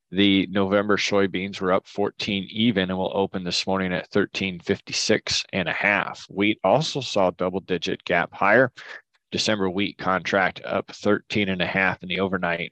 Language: English